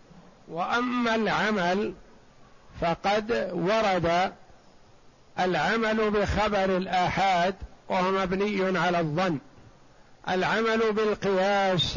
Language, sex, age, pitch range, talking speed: Arabic, male, 60-79, 180-205 Hz, 65 wpm